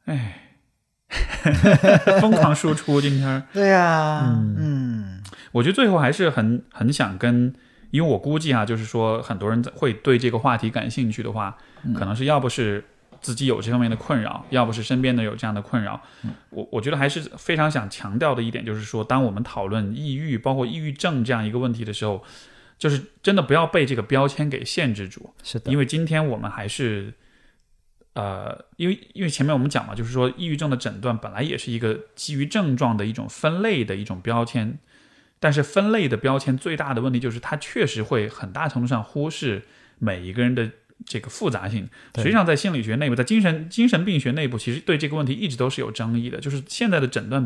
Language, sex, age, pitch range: Chinese, male, 20-39, 115-150 Hz